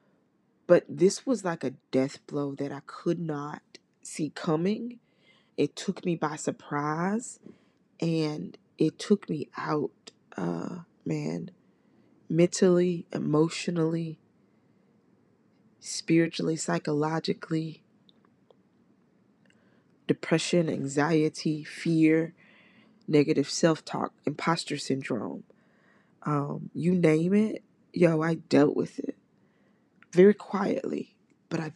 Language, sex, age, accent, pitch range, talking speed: English, female, 20-39, American, 155-205 Hz, 95 wpm